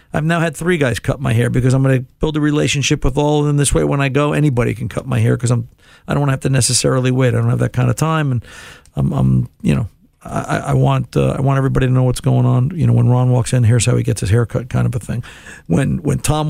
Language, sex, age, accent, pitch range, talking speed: English, male, 50-69, American, 125-145 Hz, 300 wpm